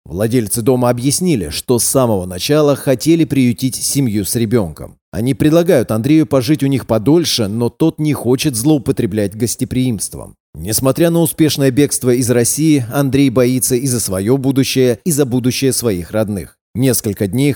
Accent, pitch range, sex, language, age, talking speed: native, 110-140 Hz, male, Russian, 30-49, 150 wpm